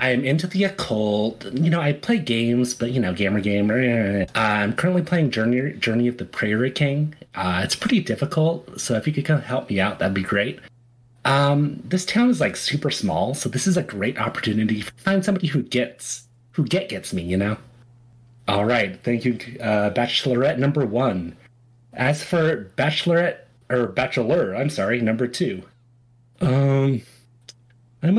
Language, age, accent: English, 30-49, American